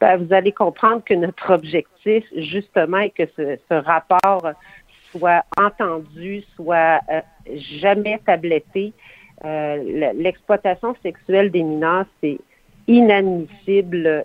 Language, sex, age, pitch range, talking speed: French, female, 50-69, 160-195 Hz, 110 wpm